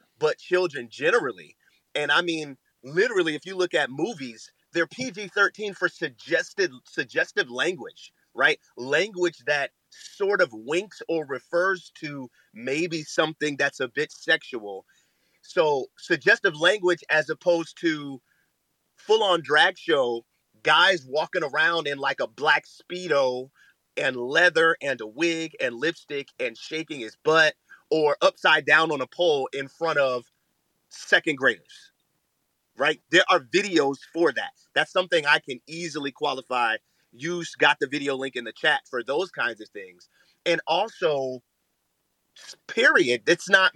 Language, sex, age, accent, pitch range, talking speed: English, male, 30-49, American, 145-205 Hz, 140 wpm